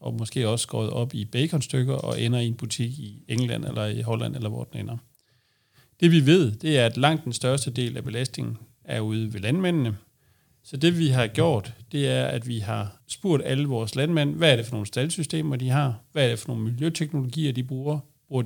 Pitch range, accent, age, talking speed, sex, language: 115-140 Hz, native, 40-59, 220 wpm, male, Danish